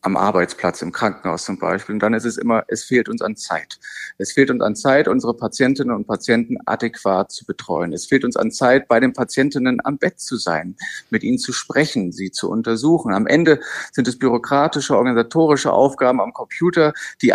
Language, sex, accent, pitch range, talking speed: German, male, German, 110-140 Hz, 195 wpm